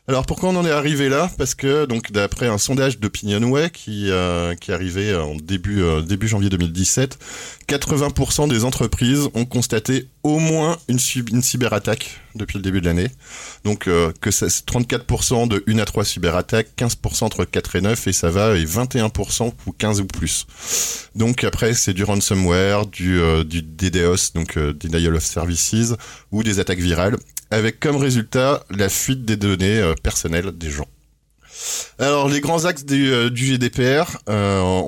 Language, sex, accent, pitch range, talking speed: French, male, French, 95-125 Hz, 175 wpm